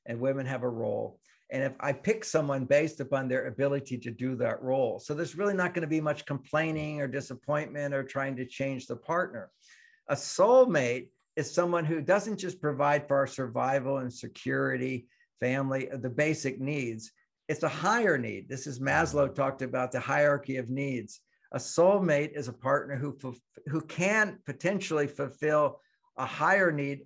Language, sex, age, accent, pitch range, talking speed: English, male, 60-79, American, 130-150 Hz, 170 wpm